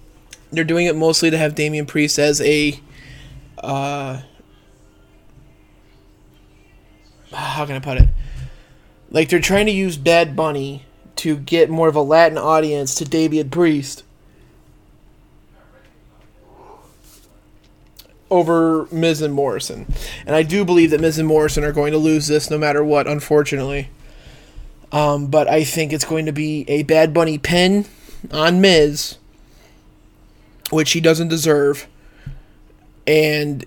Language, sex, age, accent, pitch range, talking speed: English, male, 20-39, American, 140-160 Hz, 130 wpm